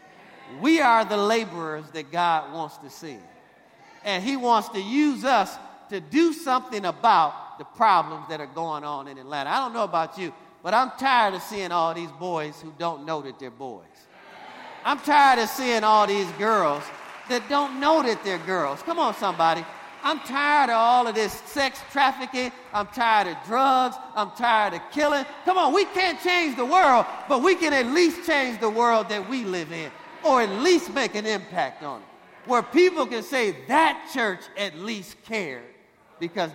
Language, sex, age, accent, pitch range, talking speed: English, male, 40-59, American, 195-275 Hz, 190 wpm